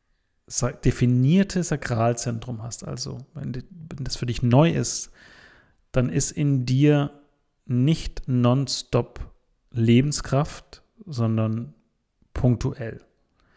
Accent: German